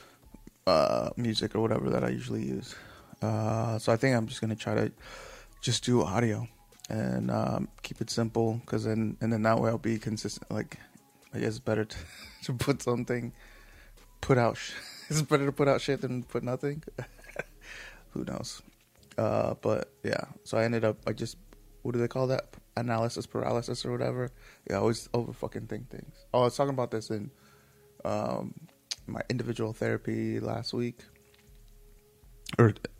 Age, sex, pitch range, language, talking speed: 20-39, male, 110-120 Hz, English, 175 wpm